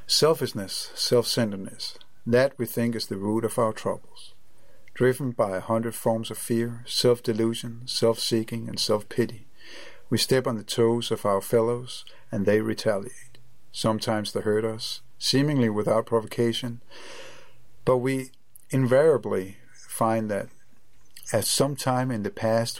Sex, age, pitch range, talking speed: male, 50-69, 110-125 Hz, 135 wpm